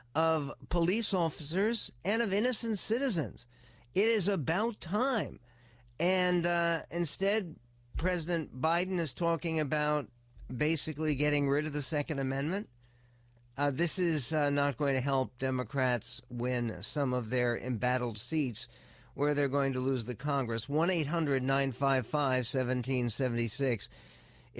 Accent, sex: American, male